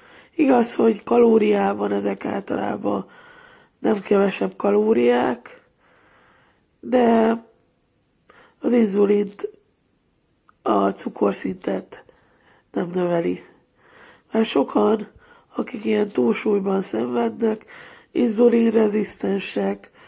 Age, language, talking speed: 20-39, Hungarian, 65 wpm